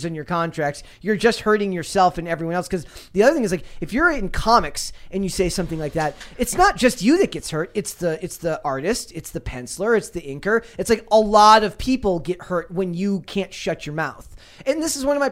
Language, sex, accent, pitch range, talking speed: English, male, American, 170-235 Hz, 250 wpm